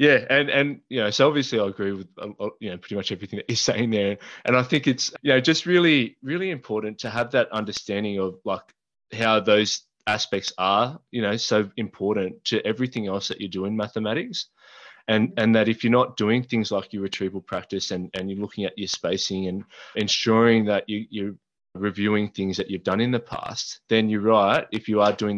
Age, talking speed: 20-39, 215 wpm